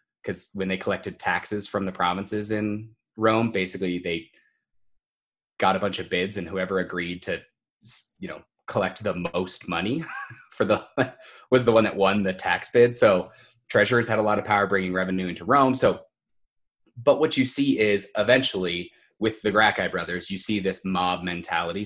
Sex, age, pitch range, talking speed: male, 20-39, 90-110 Hz, 175 wpm